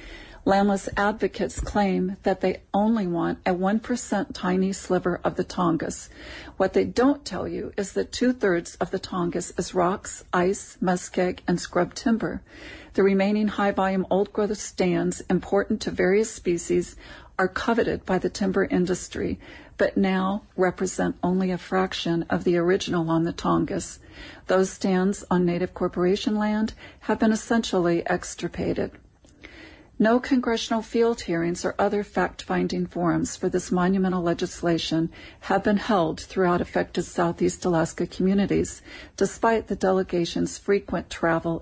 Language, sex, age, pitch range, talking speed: English, female, 40-59, 180-205 Hz, 135 wpm